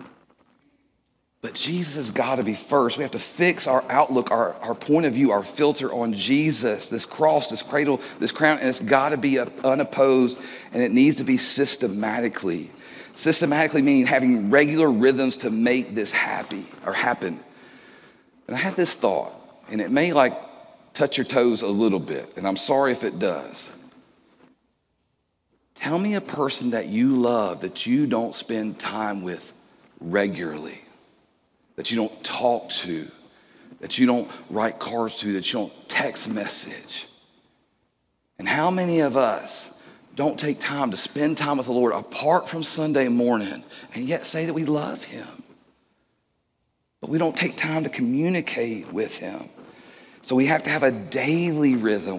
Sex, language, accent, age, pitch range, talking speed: male, English, American, 40-59, 120-160 Hz, 165 wpm